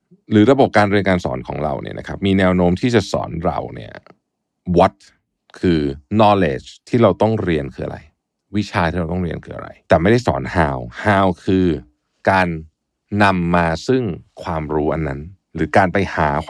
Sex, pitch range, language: male, 85-120 Hz, Thai